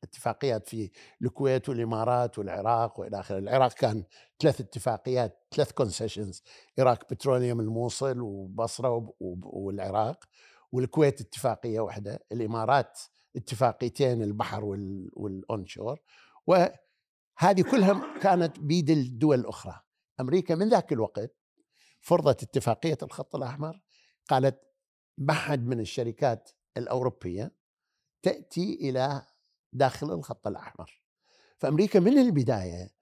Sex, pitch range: male, 115-155 Hz